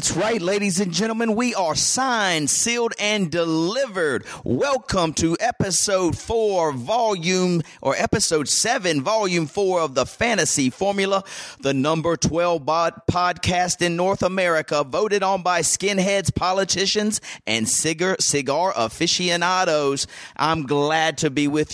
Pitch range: 150-200 Hz